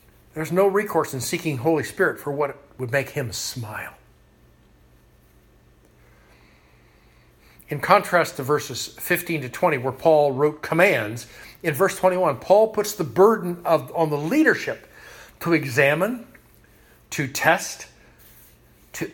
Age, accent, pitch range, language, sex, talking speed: 50-69, American, 115-185 Hz, English, male, 120 wpm